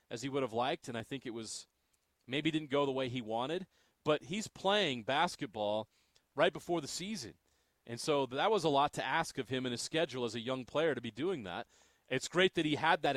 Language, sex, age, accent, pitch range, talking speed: English, male, 30-49, American, 125-165 Hz, 240 wpm